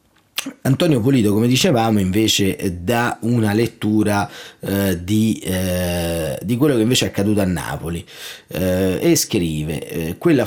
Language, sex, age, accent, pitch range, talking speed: Italian, male, 30-49, native, 95-120 Hz, 130 wpm